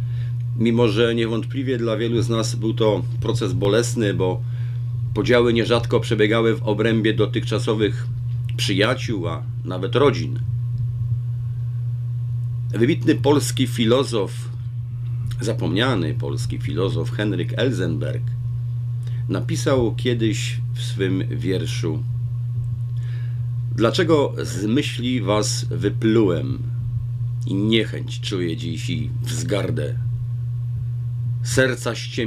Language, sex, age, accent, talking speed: Polish, male, 40-59, native, 85 wpm